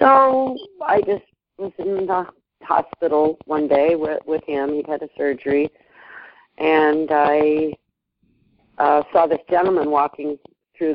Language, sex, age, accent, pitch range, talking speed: English, female, 50-69, American, 140-180 Hz, 130 wpm